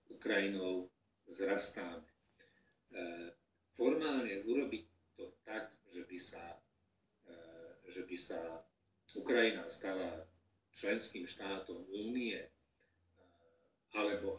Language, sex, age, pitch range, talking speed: Slovak, male, 50-69, 90-115 Hz, 75 wpm